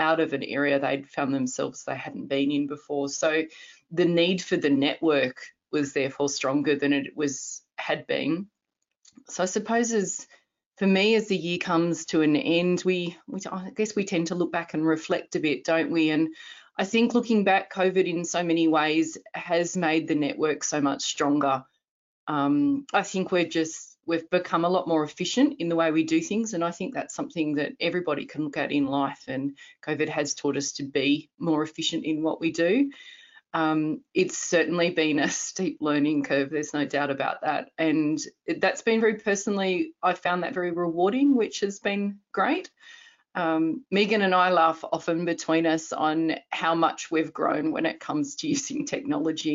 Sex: female